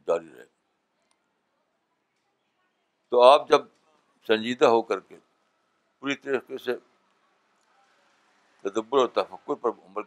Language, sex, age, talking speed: Urdu, male, 60-79, 100 wpm